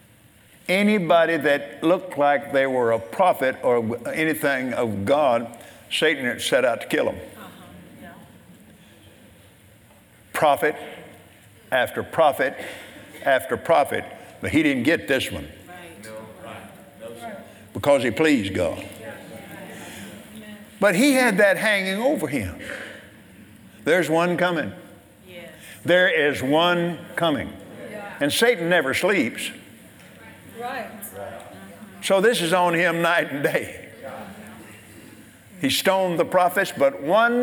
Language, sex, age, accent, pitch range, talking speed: English, male, 60-79, American, 145-220 Hz, 105 wpm